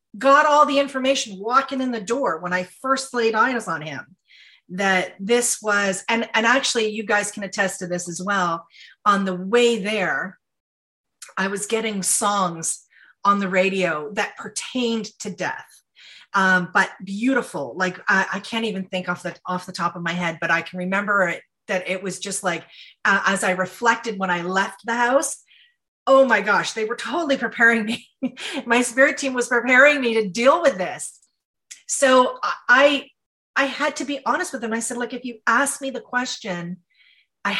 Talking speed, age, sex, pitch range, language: 185 wpm, 30-49, female, 195-265 Hz, English